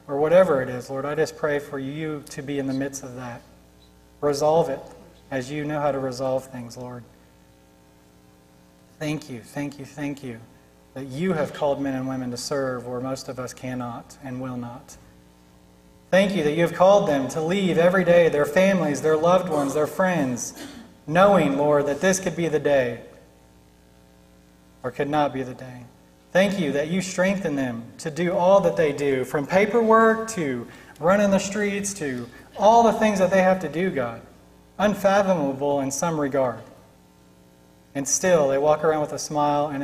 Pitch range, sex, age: 120-150 Hz, male, 30-49